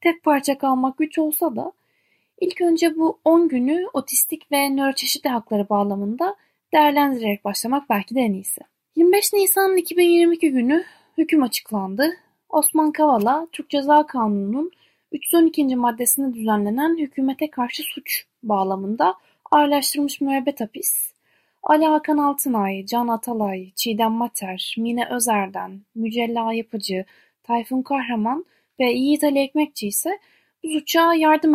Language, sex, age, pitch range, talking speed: Turkish, female, 10-29, 225-310 Hz, 120 wpm